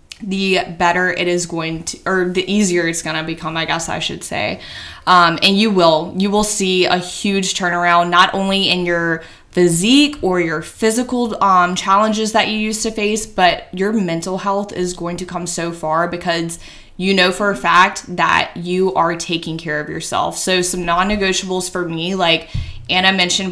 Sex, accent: female, American